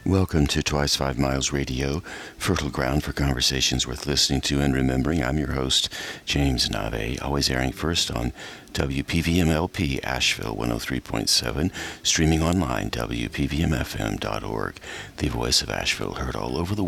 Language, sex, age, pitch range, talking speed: English, male, 60-79, 70-95 Hz, 135 wpm